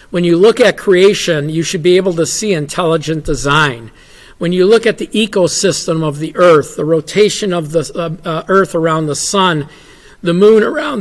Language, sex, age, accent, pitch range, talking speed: English, male, 50-69, American, 165-205 Hz, 180 wpm